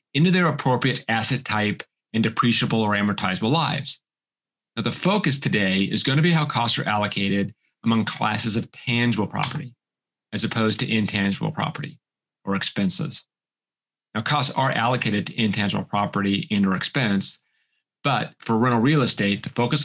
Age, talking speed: 30-49, 150 wpm